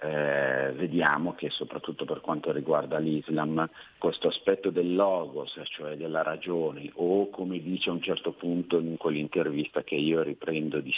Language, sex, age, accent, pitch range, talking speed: Italian, male, 50-69, native, 80-95 Hz, 155 wpm